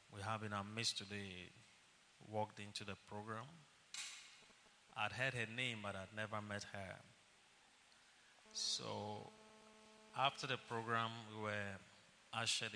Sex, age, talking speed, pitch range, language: male, 30-49, 120 wpm, 105-120 Hz, English